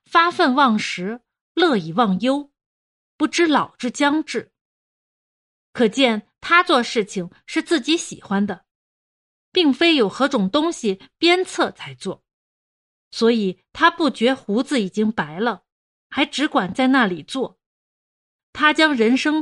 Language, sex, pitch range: Chinese, female, 195-285 Hz